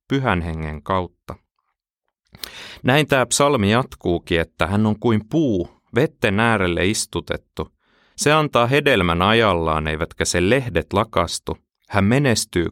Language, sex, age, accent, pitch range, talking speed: Finnish, male, 30-49, native, 85-120 Hz, 120 wpm